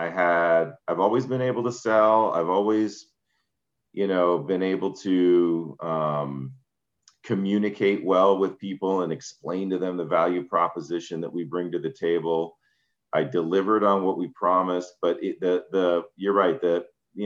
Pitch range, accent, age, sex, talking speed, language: 85-100 Hz, American, 40-59, male, 165 wpm, English